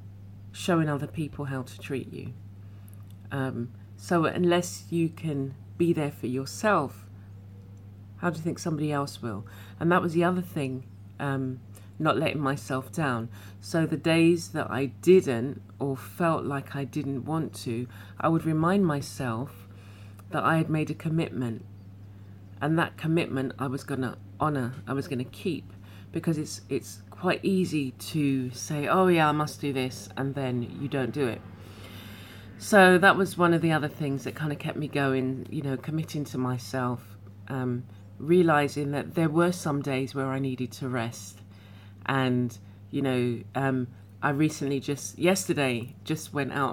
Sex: female